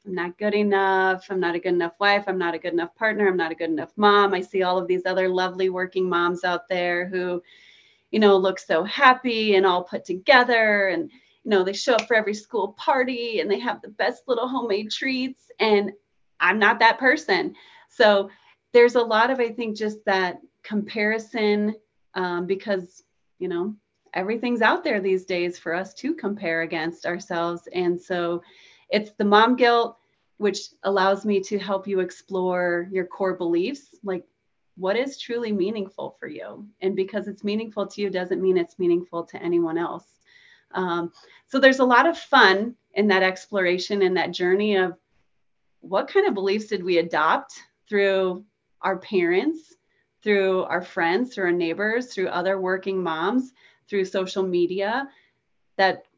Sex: female